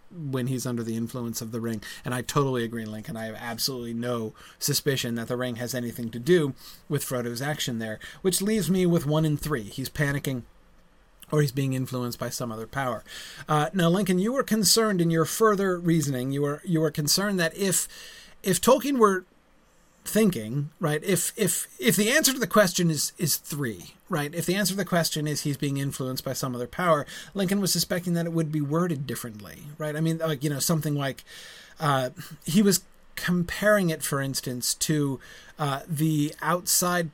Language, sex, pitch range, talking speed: English, male, 130-175 Hz, 195 wpm